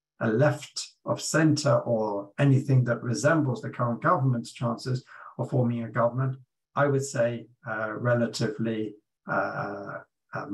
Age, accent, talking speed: 50-69, British, 125 wpm